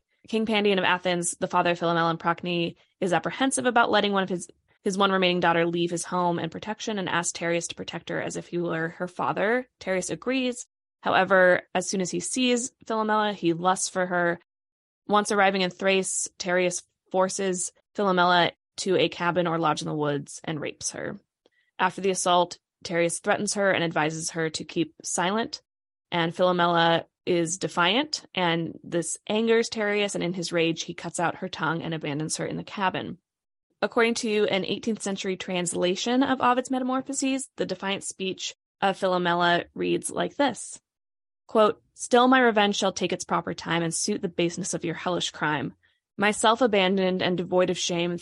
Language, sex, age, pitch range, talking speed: English, female, 20-39, 170-205 Hz, 180 wpm